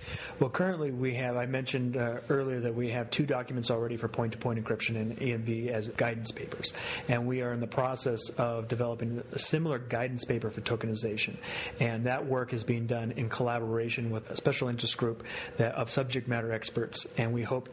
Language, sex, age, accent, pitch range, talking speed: English, male, 40-59, American, 115-125 Hz, 195 wpm